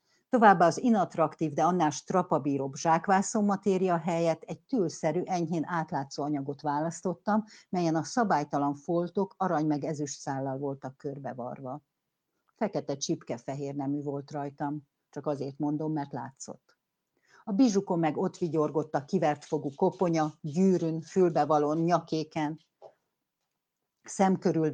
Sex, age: female, 50-69